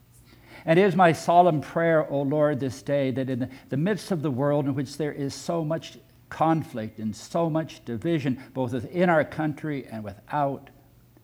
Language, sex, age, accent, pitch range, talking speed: English, male, 60-79, American, 125-160 Hz, 180 wpm